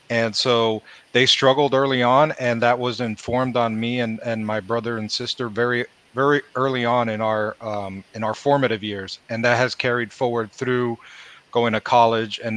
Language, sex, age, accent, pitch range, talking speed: English, male, 30-49, American, 110-125 Hz, 185 wpm